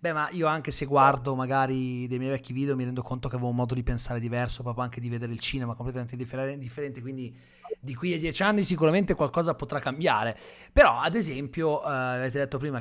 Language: Italian